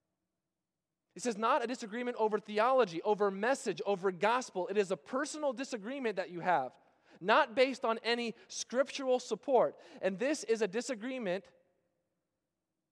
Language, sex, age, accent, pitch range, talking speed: English, male, 20-39, American, 185-250 Hz, 140 wpm